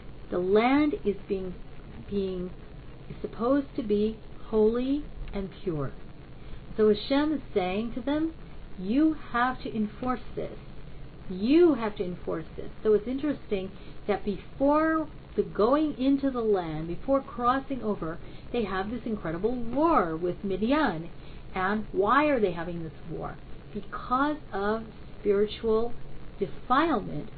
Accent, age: American, 50-69